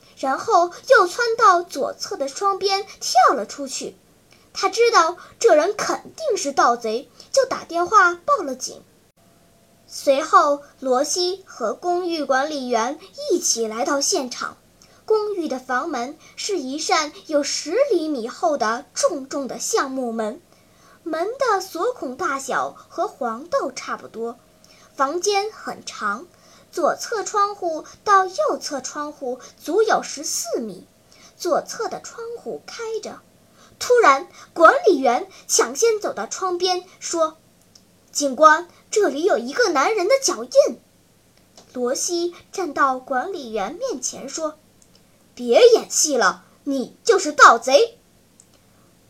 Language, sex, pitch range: Chinese, male, 275-390 Hz